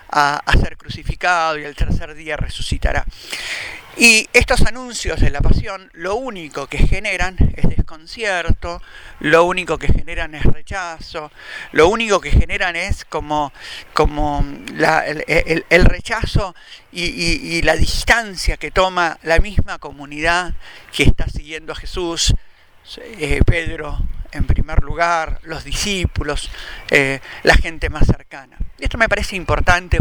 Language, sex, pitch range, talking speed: Spanish, male, 150-180 Hz, 140 wpm